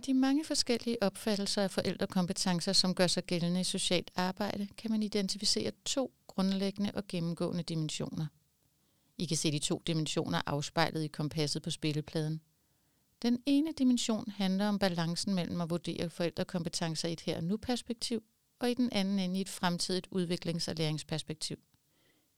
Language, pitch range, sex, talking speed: Danish, 170-210 Hz, female, 155 wpm